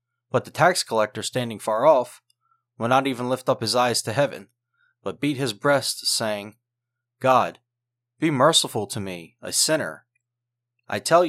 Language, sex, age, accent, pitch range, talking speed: English, male, 30-49, American, 120-140 Hz, 160 wpm